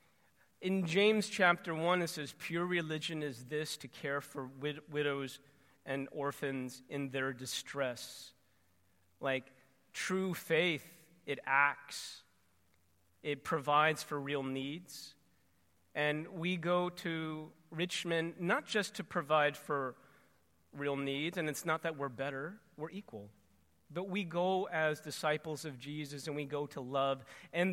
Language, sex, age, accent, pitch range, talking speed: English, male, 40-59, American, 135-170 Hz, 135 wpm